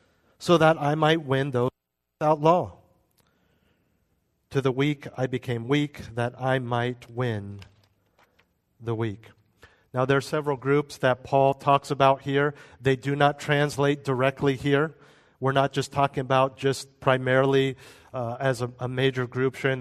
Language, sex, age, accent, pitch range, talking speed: English, male, 40-59, American, 120-145 Hz, 150 wpm